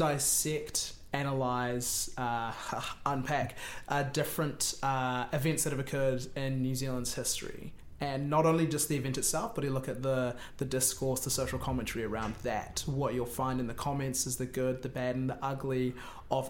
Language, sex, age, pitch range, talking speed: English, male, 20-39, 125-145 Hz, 180 wpm